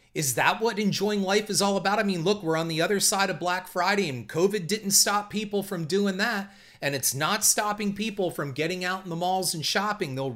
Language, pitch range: English, 140-195 Hz